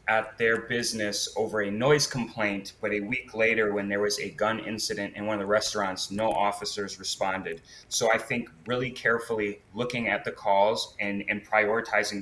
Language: English